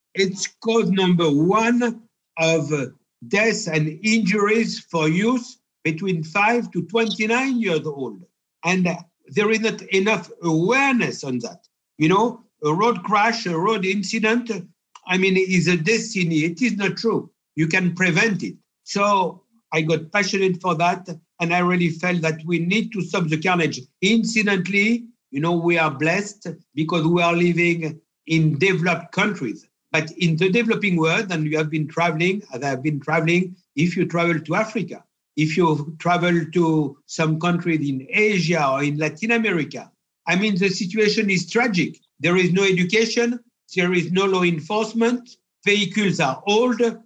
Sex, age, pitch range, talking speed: male, 60-79, 165-210 Hz, 160 wpm